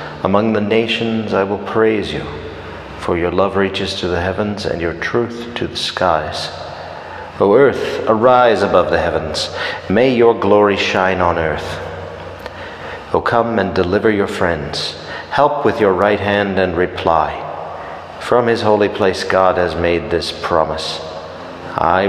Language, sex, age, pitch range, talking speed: English, male, 40-59, 90-110 Hz, 150 wpm